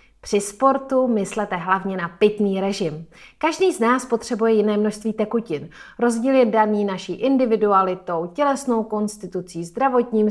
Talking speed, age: 130 wpm, 30-49